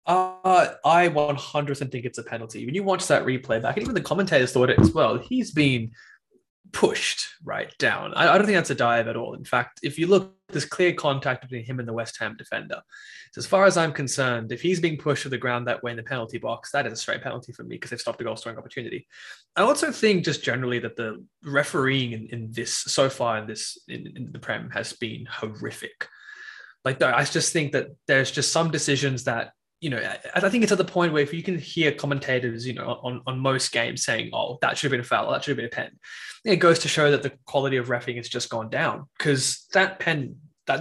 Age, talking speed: 20-39, 245 wpm